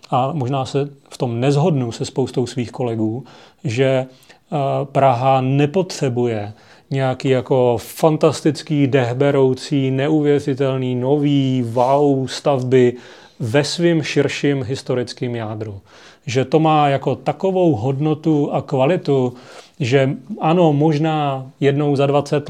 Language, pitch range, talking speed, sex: Czech, 130-155 Hz, 105 wpm, male